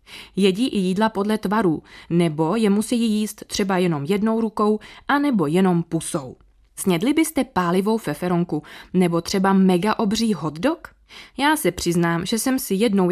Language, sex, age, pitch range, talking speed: Czech, female, 20-39, 175-235 Hz, 150 wpm